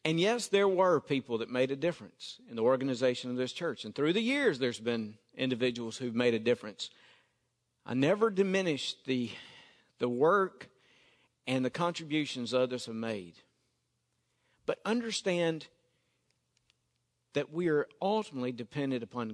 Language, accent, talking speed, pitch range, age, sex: English, American, 145 wpm, 125-180 Hz, 50-69, male